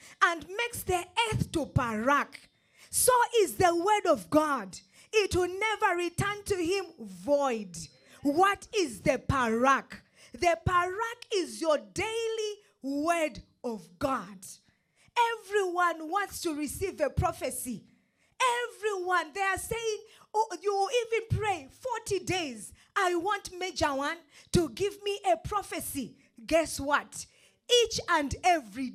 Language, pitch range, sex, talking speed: English, 280-415 Hz, female, 125 wpm